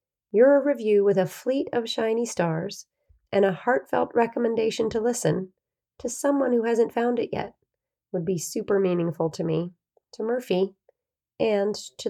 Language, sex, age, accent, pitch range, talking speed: English, female, 30-49, American, 185-220 Hz, 155 wpm